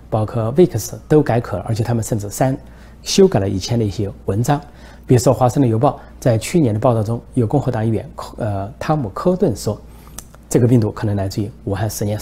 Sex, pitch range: male, 105-130 Hz